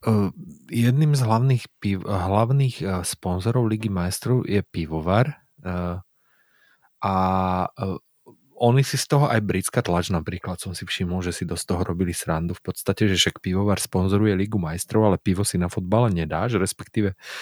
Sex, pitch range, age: male, 90-110 Hz, 30-49